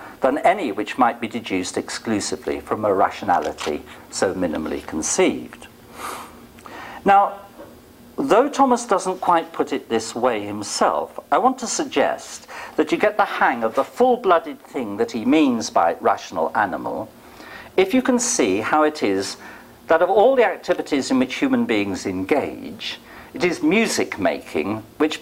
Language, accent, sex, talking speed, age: English, British, male, 150 wpm, 50-69